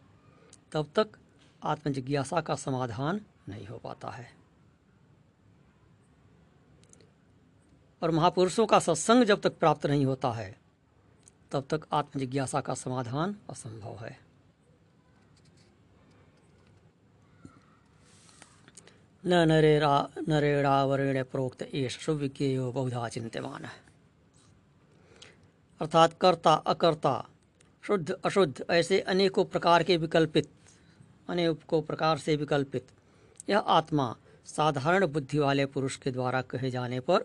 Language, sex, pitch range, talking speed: Hindi, female, 135-175 Hz, 95 wpm